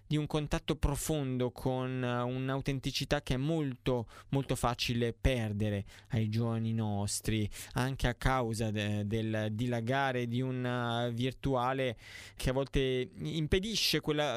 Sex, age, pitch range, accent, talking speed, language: male, 20-39, 120-150 Hz, native, 115 wpm, Italian